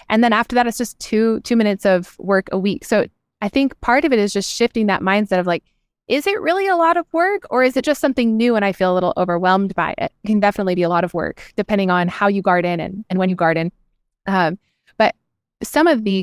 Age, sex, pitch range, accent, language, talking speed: 20-39, female, 180-225 Hz, American, English, 260 wpm